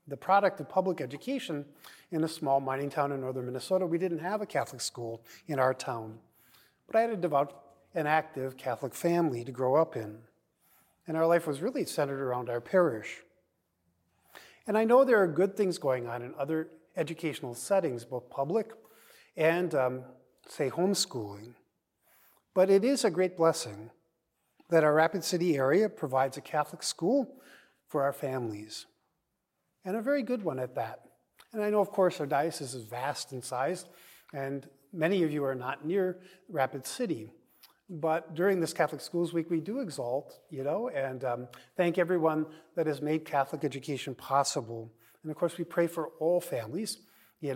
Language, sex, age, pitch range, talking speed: English, male, 40-59, 135-180 Hz, 175 wpm